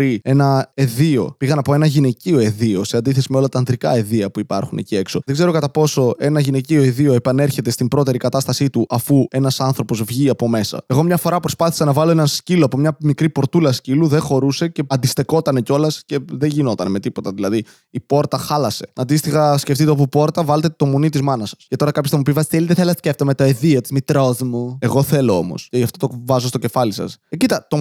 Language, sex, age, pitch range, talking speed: Greek, male, 20-39, 130-155 Hz, 215 wpm